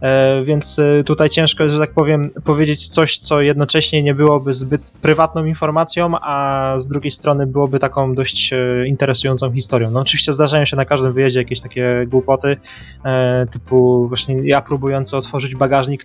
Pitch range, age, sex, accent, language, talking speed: 125-145 Hz, 20-39, male, native, Polish, 155 wpm